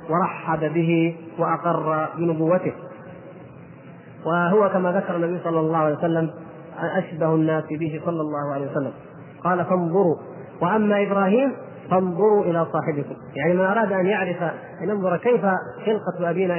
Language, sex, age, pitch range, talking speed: Arabic, male, 30-49, 155-185 Hz, 130 wpm